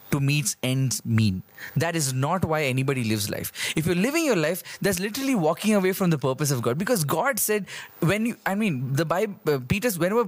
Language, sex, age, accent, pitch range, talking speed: English, male, 20-39, Indian, 140-195 Hz, 210 wpm